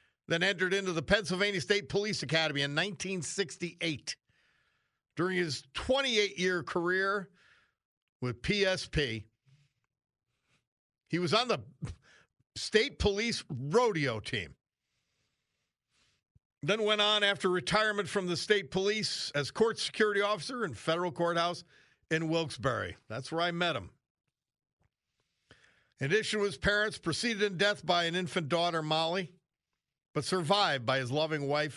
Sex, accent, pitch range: male, American, 140-195 Hz